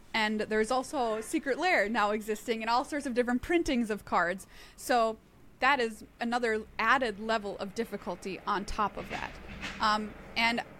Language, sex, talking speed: English, female, 165 wpm